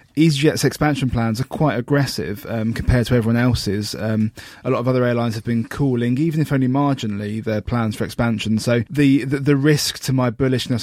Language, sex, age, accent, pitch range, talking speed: English, male, 20-39, British, 110-130 Hz, 200 wpm